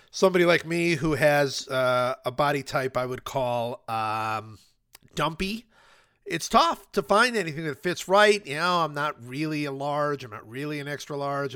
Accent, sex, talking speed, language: American, male, 180 wpm, English